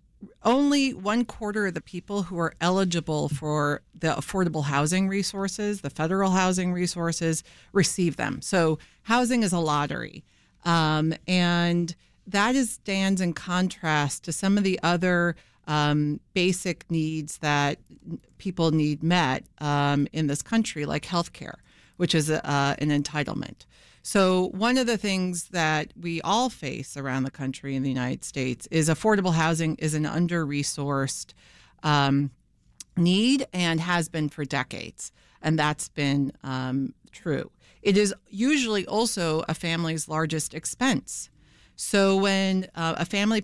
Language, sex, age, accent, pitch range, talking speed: English, female, 40-59, American, 150-185 Hz, 140 wpm